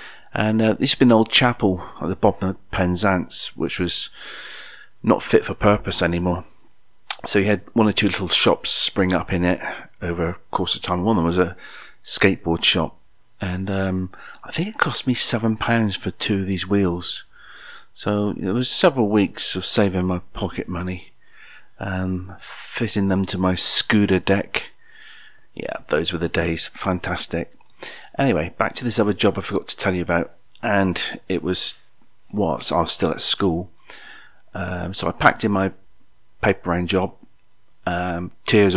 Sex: male